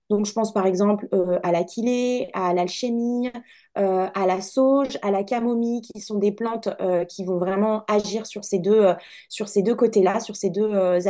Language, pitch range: French, 195-255 Hz